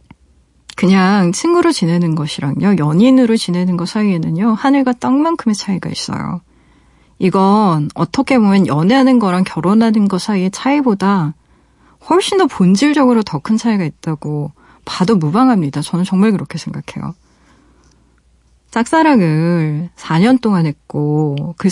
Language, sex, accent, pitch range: Korean, female, native, 160-230 Hz